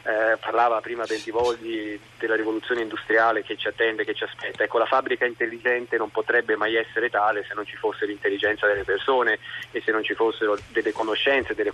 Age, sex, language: 20-39, male, Italian